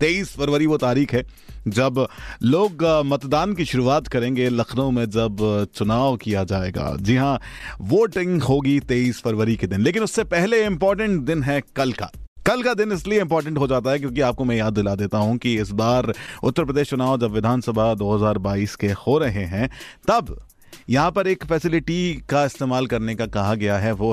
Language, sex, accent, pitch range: Hindi, male, native, 115-175 Hz